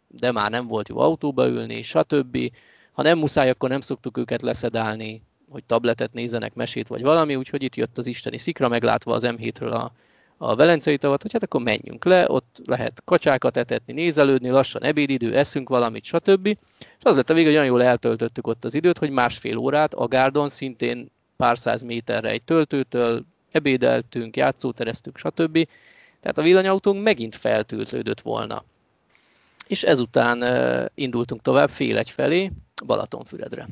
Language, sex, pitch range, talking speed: Hungarian, male, 115-150 Hz, 160 wpm